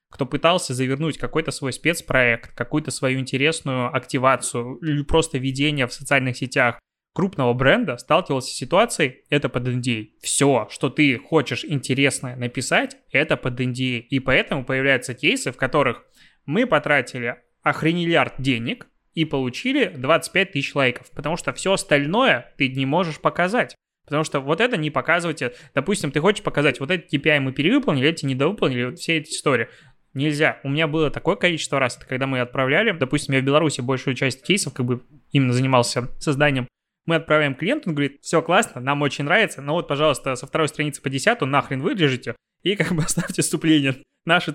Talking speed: 170 wpm